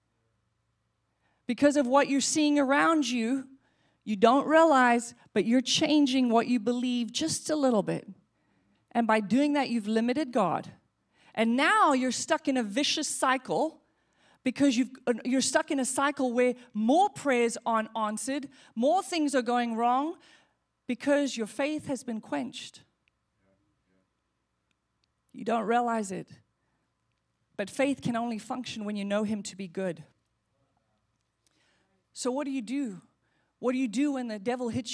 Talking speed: 150 wpm